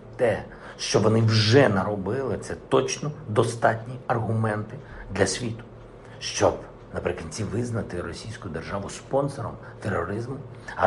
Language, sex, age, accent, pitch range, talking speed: Ukrainian, male, 50-69, native, 100-125 Hz, 110 wpm